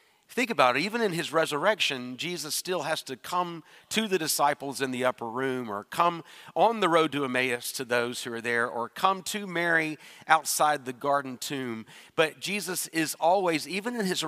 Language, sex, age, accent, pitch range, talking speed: English, male, 40-59, American, 130-180 Hz, 195 wpm